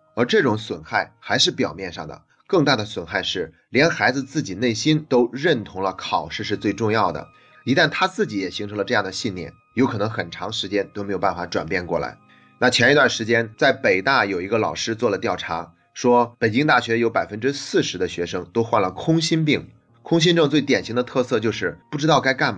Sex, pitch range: male, 100-130 Hz